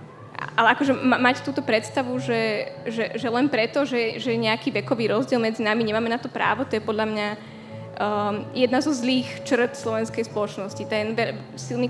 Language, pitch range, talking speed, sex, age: Slovak, 220-255 Hz, 160 wpm, female, 10-29